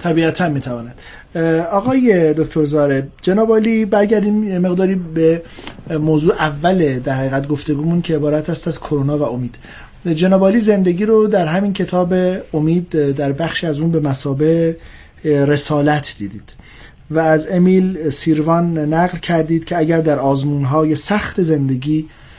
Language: Persian